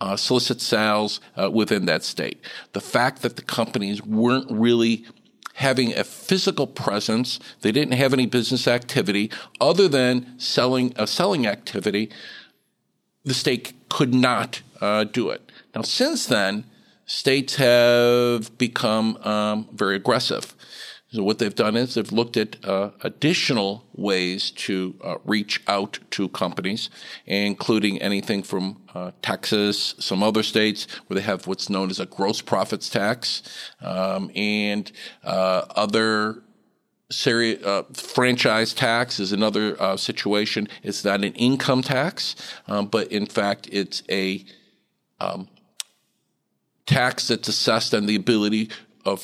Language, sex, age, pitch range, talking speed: English, male, 50-69, 100-125 Hz, 140 wpm